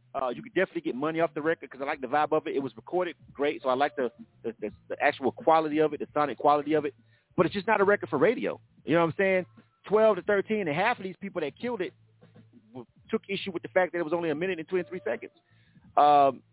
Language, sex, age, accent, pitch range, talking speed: English, male, 30-49, American, 125-175 Hz, 270 wpm